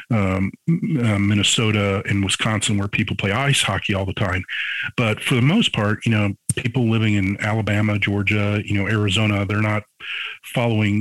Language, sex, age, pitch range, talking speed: English, male, 40-59, 100-115 Hz, 170 wpm